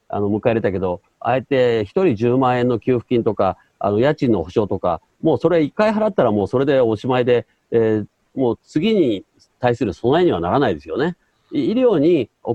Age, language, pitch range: 40-59, Japanese, 110-155 Hz